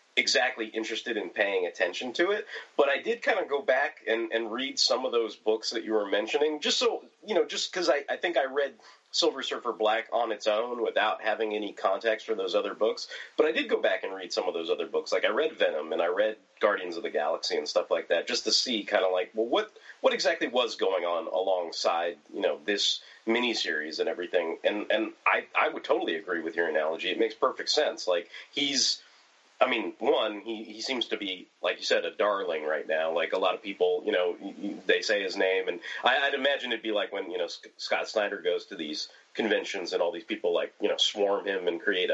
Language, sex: English, male